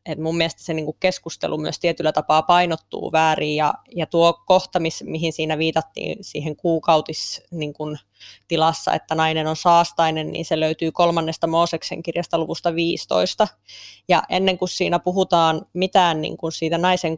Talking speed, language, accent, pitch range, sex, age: 150 wpm, Finnish, native, 160-175 Hz, female, 20-39